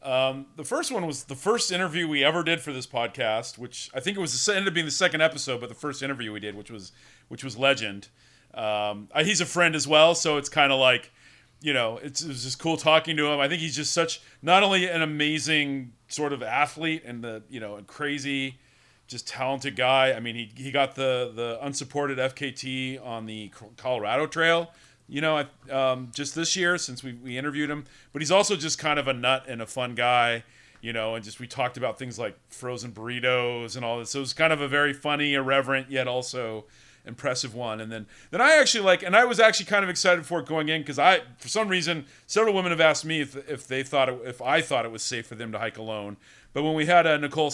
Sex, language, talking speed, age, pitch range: male, English, 245 wpm, 40-59, 125-155 Hz